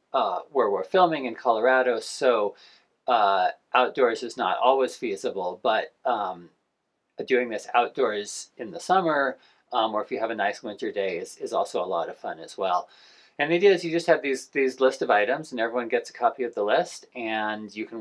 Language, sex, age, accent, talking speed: English, male, 40-59, American, 205 wpm